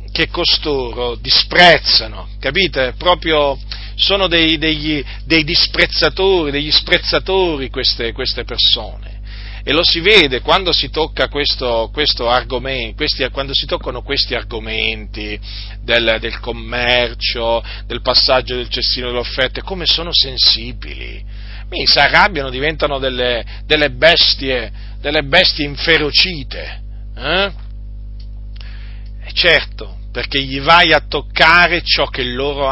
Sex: male